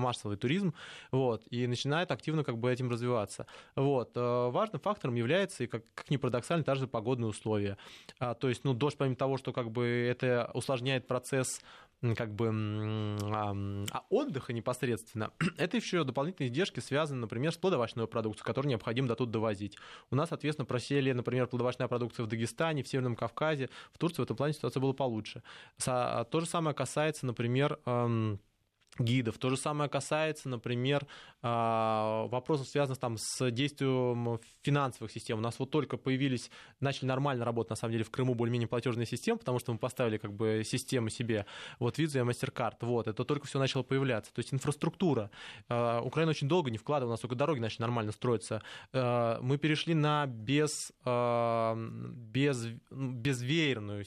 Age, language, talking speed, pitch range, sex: 20-39, Russian, 160 wpm, 115-140 Hz, male